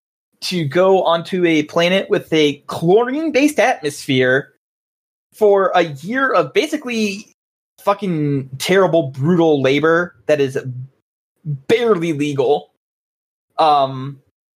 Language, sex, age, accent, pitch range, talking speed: English, male, 20-39, American, 140-185 Hz, 100 wpm